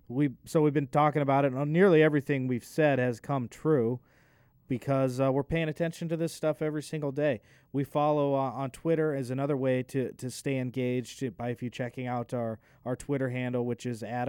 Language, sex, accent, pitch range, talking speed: English, male, American, 115-135 Hz, 210 wpm